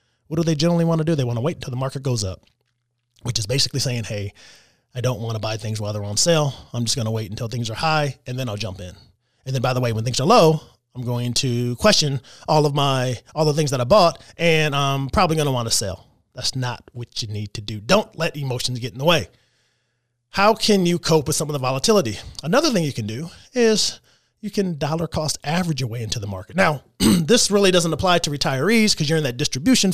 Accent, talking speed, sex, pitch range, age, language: American, 255 wpm, male, 115-160 Hz, 30-49, English